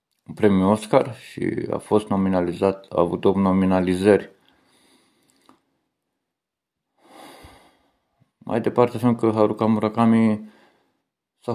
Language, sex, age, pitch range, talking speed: Romanian, male, 50-69, 95-115 Hz, 95 wpm